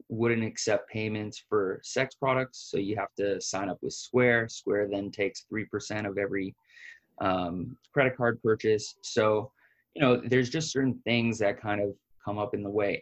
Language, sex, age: English, male, 20-39